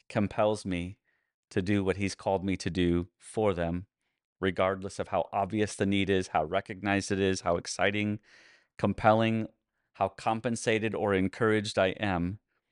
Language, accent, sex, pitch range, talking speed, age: English, American, male, 90-105 Hz, 150 wpm, 30-49